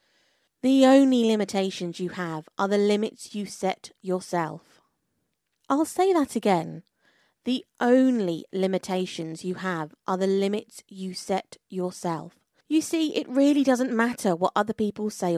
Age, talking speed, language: 30-49, 140 wpm, English